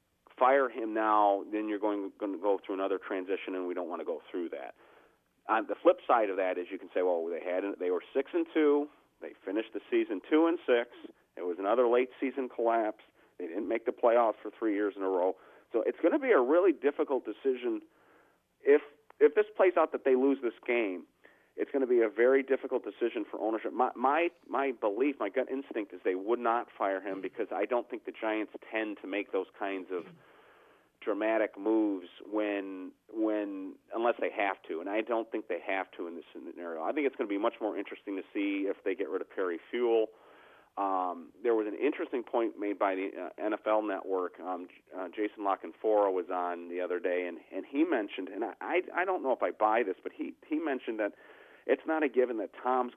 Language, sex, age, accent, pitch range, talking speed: English, male, 40-59, American, 105-175 Hz, 225 wpm